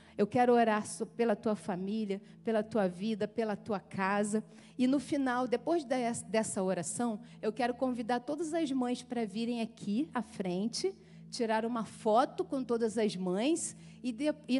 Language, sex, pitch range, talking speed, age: Portuguese, female, 210-265 Hz, 155 wpm, 40-59